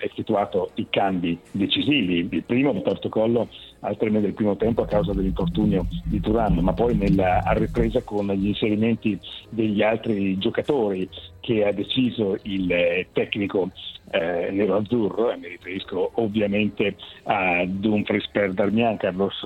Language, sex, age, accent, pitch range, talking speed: Italian, male, 60-79, native, 95-110 Hz, 140 wpm